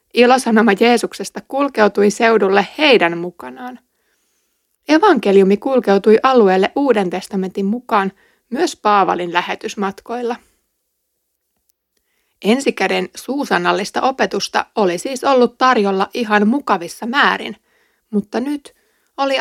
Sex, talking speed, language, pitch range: female, 85 wpm, Finnish, 195-255 Hz